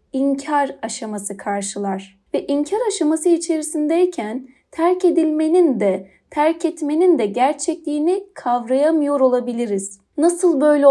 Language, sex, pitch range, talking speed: Turkish, female, 225-330 Hz, 100 wpm